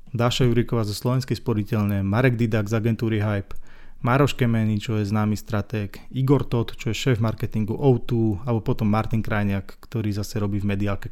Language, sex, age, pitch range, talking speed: Slovak, male, 20-39, 110-125 Hz, 175 wpm